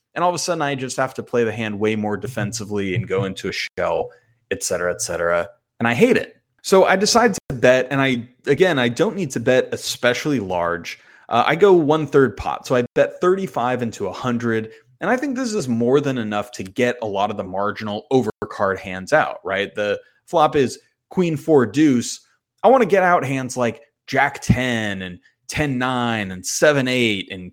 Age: 30-49